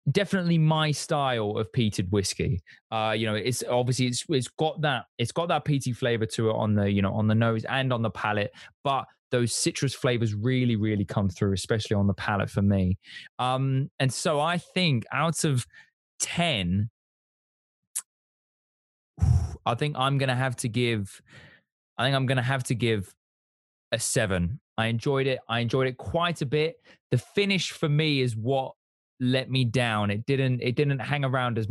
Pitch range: 110-150 Hz